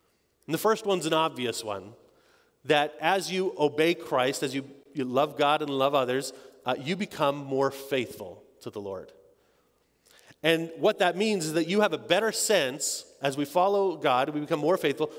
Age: 30-49